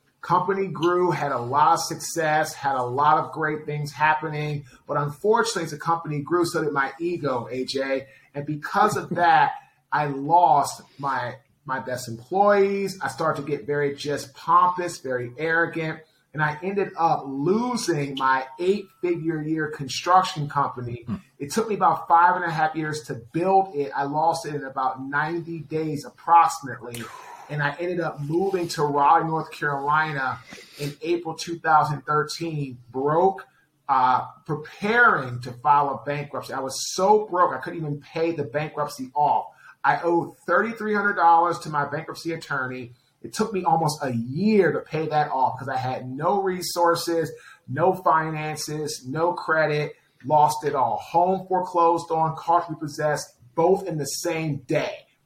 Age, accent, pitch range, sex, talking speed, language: 30-49, American, 145-170 Hz, male, 155 wpm, English